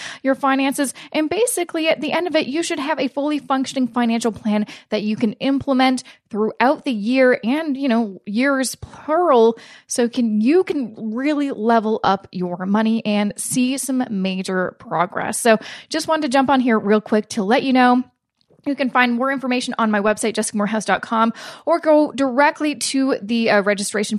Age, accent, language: 20-39, American, English